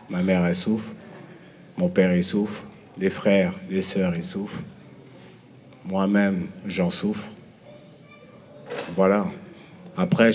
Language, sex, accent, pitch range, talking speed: French, male, French, 100-115 Hz, 110 wpm